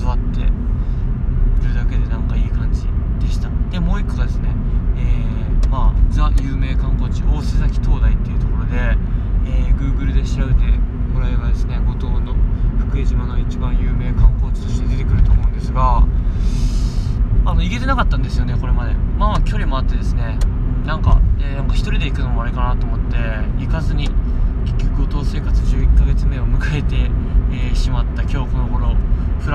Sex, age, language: male, 20-39, Japanese